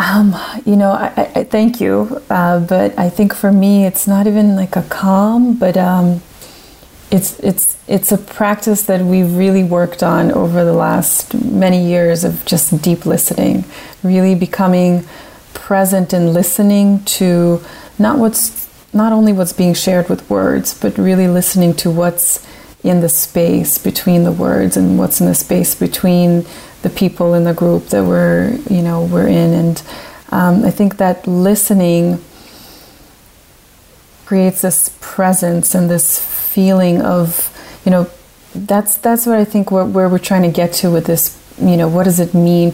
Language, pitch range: English, 170-195 Hz